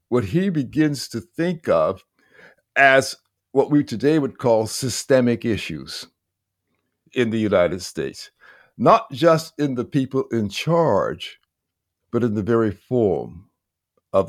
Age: 60-79